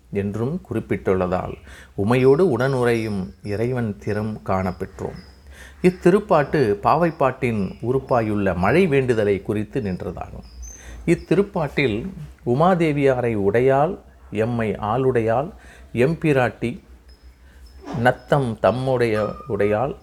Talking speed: 65 wpm